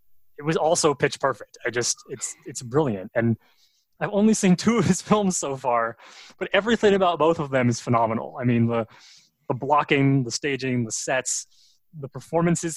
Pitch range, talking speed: 115-150 Hz, 185 wpm